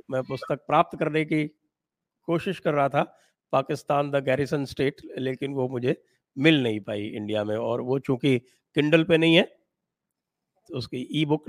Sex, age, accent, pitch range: male, 50-69, Indian, 120-160 Hz